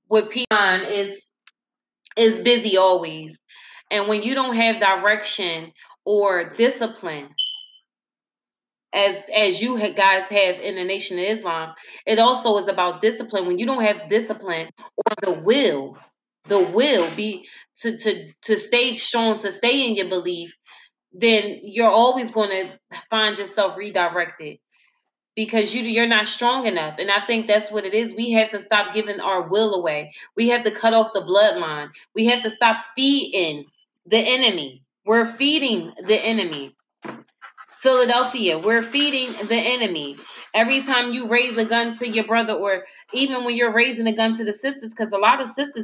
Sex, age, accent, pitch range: female, 20-39, American, 195-235 Hz